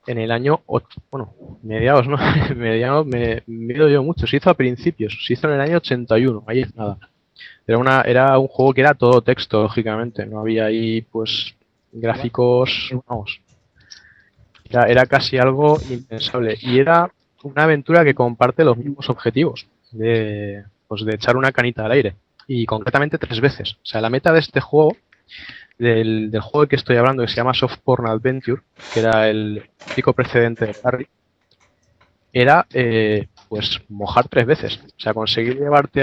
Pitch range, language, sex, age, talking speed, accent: 110-135 Hz, Spanish, male, 20-39, 175 wpm, Spanish